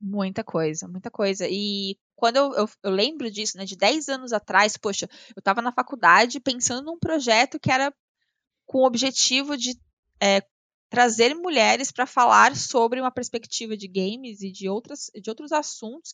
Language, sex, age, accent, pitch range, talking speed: Portuguese, female, 20-39, Brazilian, 205-275 Hz, 170 wpm